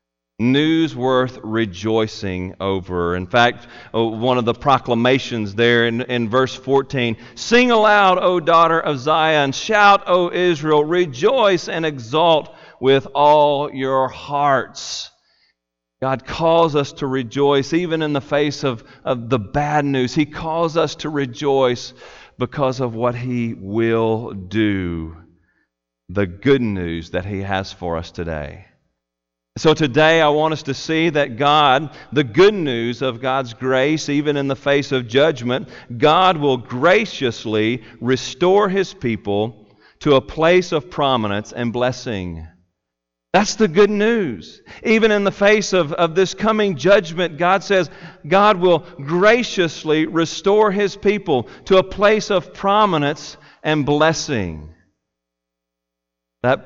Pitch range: 115-165 Hz